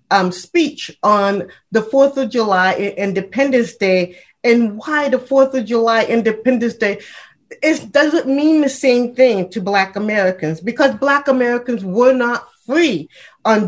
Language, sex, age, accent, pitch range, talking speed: English, female, 30-49, American, 205-275 Hz, 145 wpm